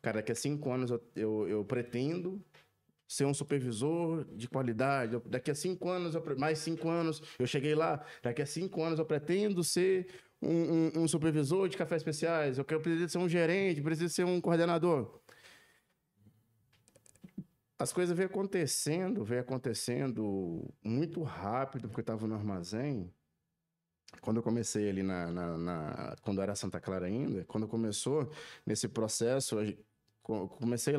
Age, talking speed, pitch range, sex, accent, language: 20-39, 155 wpm, 115-160 Hz, male, Brazilian, Portuguese